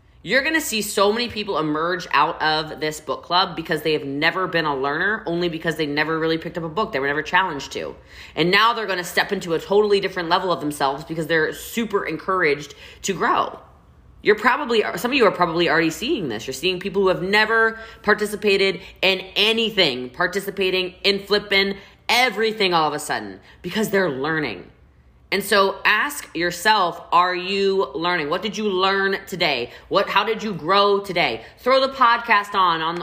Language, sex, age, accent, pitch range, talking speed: English, female, 20-39, American, 165-220 Hz, 195 wpm